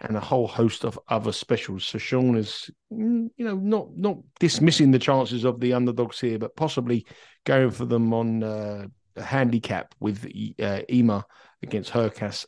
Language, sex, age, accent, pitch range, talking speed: English, male, 50-69, British, 115-140 Hz, 175 wpm